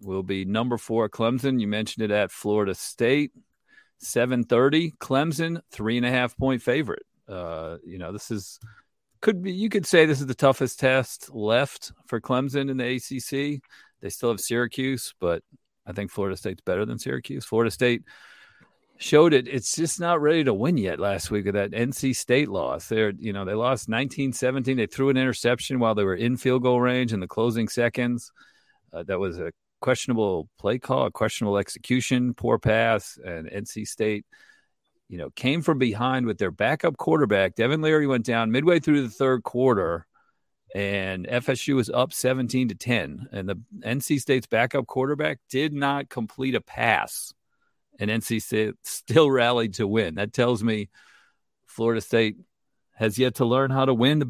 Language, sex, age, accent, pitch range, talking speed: English, male, 50-69, American, 110-135 Hz, 180 wpm